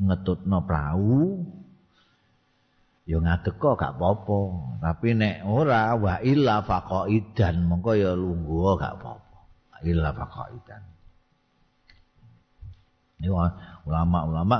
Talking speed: 120 wpm